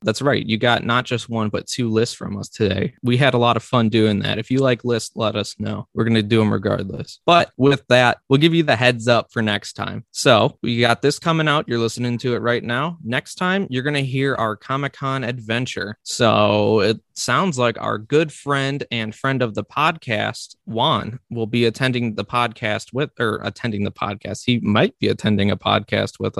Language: English